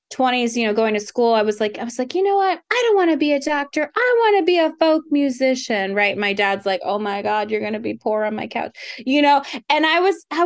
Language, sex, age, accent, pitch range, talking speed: English, female, 20-39, American, 210-295 Hz, 285 wpm